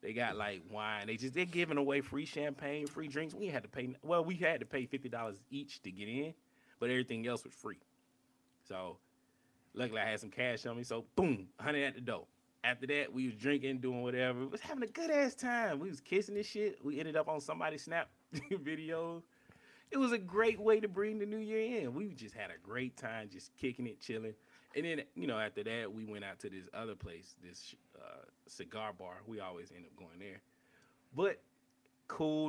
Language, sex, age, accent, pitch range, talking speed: English, male, 30-49, American, 125-155 Hz, 220 wpm